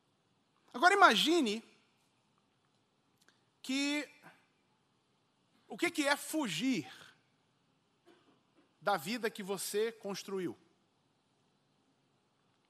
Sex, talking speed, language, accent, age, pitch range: male, 60 wpm, Portuguese, Brazilian, 40-59, 220-300 Hz